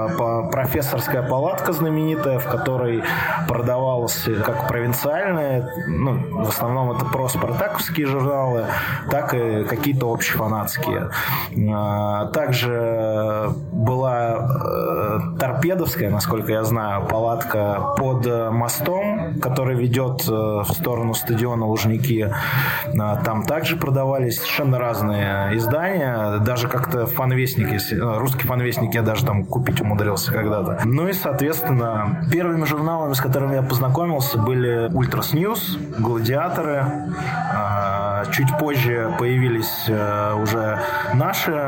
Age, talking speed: 20-39, 100 wpm